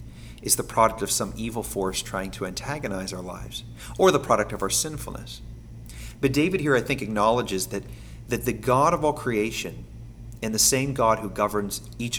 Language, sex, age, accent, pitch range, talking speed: English, male, 40-59, American, 100-115 Hz, 185 wpm